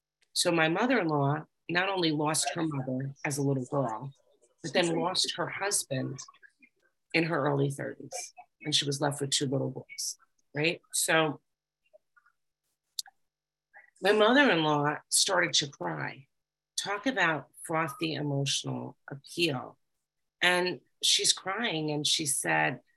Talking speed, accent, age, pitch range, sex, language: 125 wpm, American, 40-59, 140-175 Hz, female, English